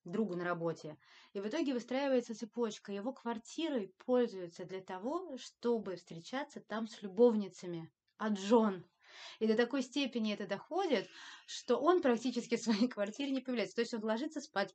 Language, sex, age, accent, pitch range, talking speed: Russian, female, 20-39, native, 185-240 Hz, 165 wpm